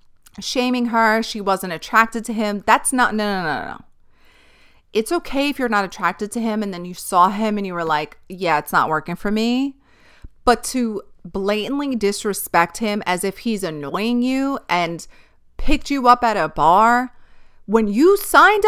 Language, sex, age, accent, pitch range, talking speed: English, female, 30-49, American, 195-255 Hz, 185 wpm